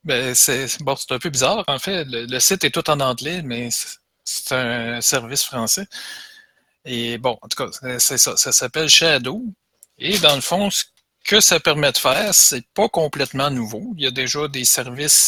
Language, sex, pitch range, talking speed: French, male, 125-160 Hz, 205 wpm